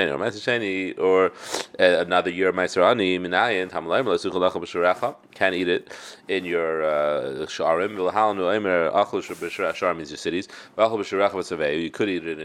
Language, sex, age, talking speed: English, male, 30-49, 85 wpm